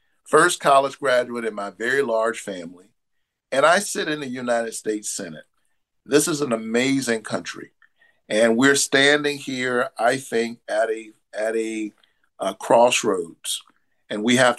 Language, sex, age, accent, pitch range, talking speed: English, male, 50-69, American, 115-150 Hz, 150 wpm